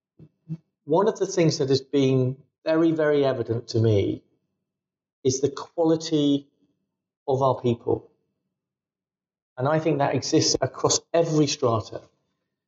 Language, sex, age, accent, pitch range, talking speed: English, male, 40-59, British, 125-155 Hz, 125 wpm